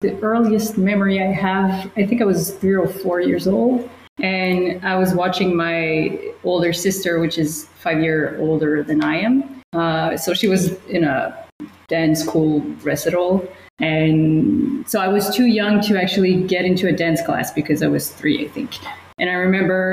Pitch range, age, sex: 170-205 Hz, 20-39, female